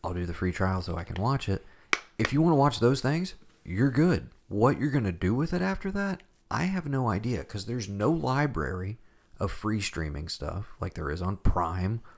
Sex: male